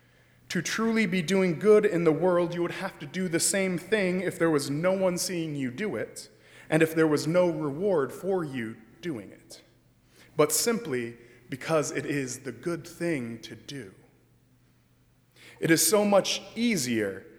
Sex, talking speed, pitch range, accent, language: male, 175 wpm, 140-185 Hz, American, English